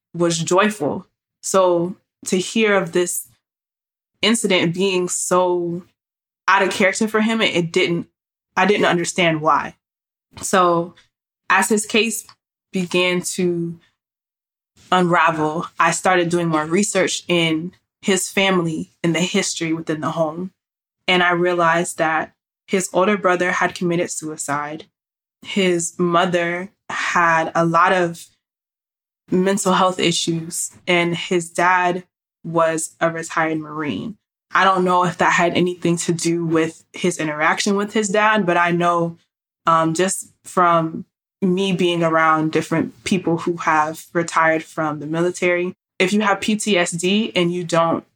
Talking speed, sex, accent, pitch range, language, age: 135 wpm, female, American, 165-185 Hz, English, 20-39